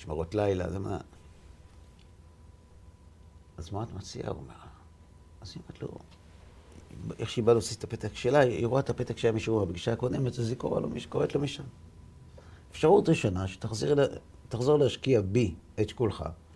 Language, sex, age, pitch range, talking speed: Hebrew, male, 50-69, 80-105 Hz, 160 wpm